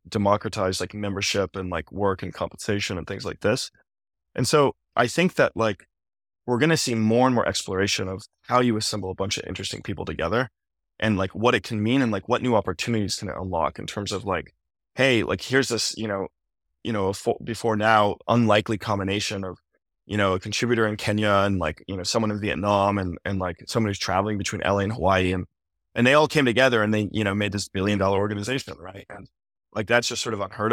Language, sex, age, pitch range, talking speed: English, male, 20-39, 95-110 Hz, 220 wpm